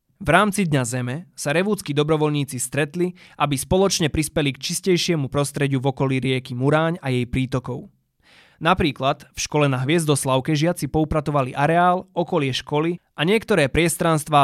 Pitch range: 135-170 Hz